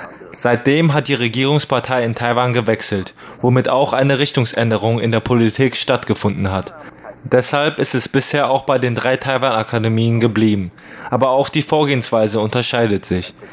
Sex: male